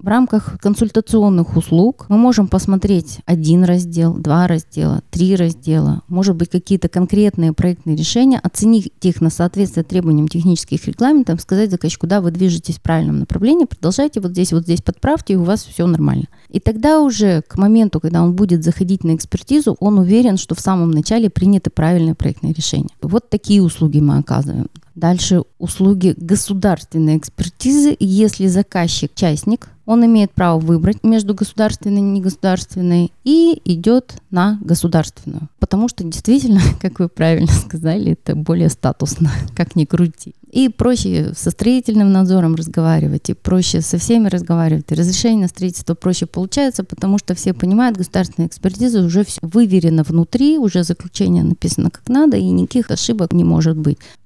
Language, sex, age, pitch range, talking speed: Russian, female, 30-49, 165-210 Hz, 155 wpm